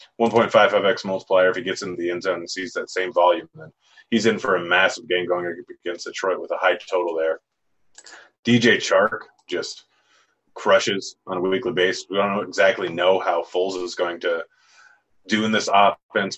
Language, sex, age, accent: English, male, 30-49, American